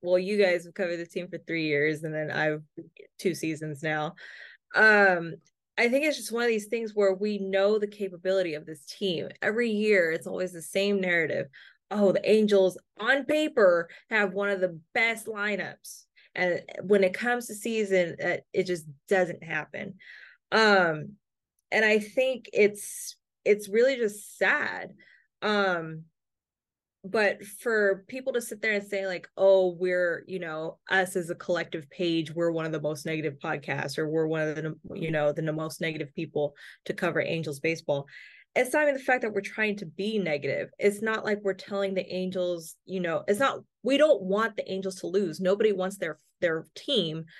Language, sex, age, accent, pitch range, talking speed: English, female, 20-39, American, 170-215 Hz, 185 wpm